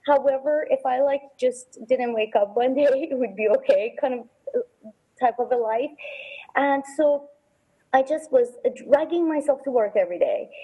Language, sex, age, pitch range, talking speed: English, female, 30-49, 220-285 Hz, 175 wpm